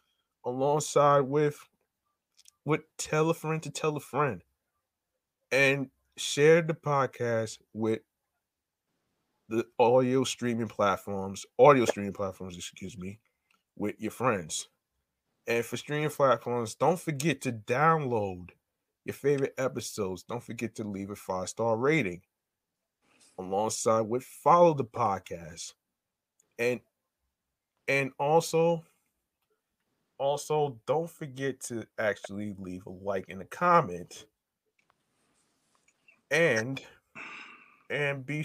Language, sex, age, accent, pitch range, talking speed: English, male, 20-39, American, 110-150 Hz, 105 wpm